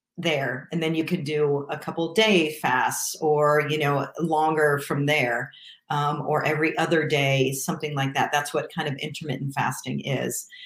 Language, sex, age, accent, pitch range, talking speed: English, female, 40-59, American, 145-175 Hz, 175 wpm